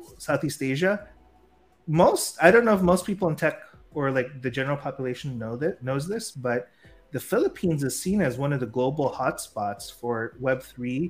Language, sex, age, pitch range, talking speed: Filipino, male, 30-49, 120-145 Hz, 180 wpm